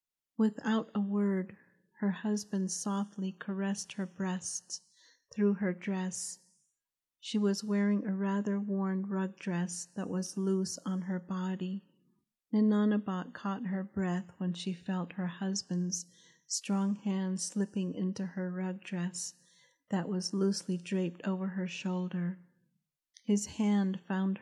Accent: American